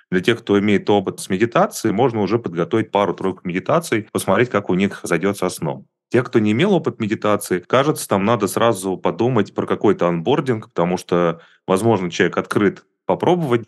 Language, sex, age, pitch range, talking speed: Russian, male, 30-49, 90-115 Hz, 165 wpm